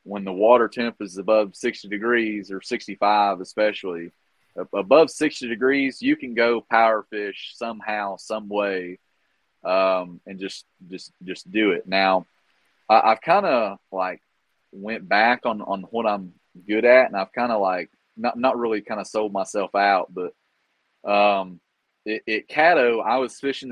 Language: English